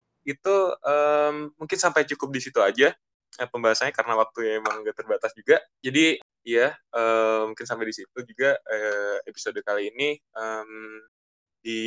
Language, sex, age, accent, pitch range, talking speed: Indonesian, male, 10-29, native, 115-160 Hz, 155 wpm